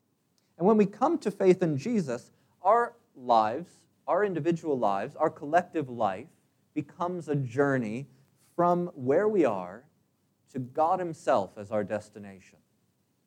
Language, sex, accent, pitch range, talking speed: English, male, American, 130-180 Hz, 130 wpm